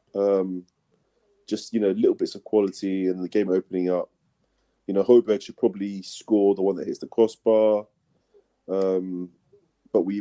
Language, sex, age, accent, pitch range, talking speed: English, male, 20-39, British, 95-115 Hz, 165 wpm